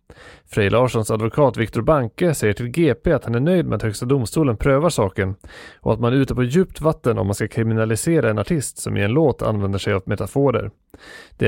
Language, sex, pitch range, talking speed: English, male, 105-140 Hz, 215 wpm